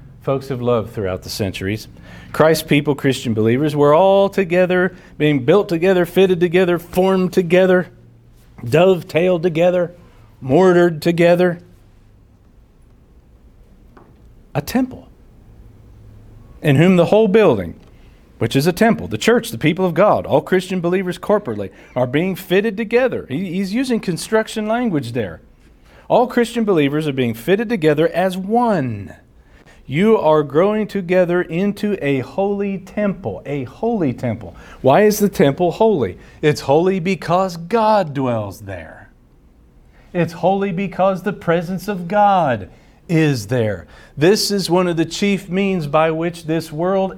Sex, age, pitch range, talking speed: male, 50-69, 120-190 Hz, 135 wpm